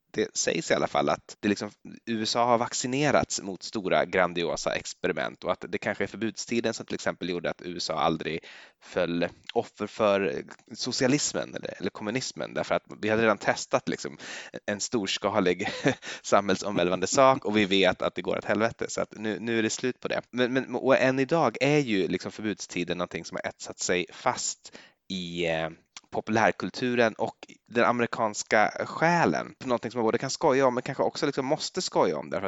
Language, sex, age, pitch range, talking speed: Swedish, male, 20-39, 95-125 Hz, 185 wpm